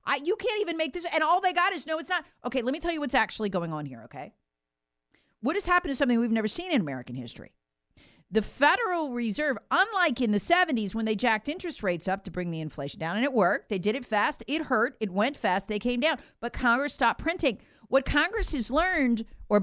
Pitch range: 200-300 Hz